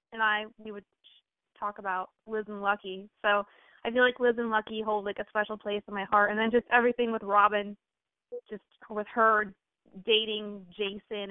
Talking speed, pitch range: 185 wpm, 205-245 Hz